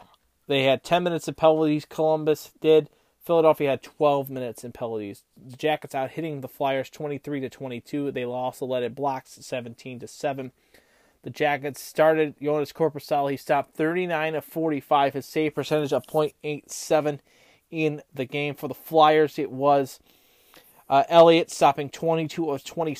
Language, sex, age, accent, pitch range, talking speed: English, male, 30-49, American, 140-165 Hz, 170 wpm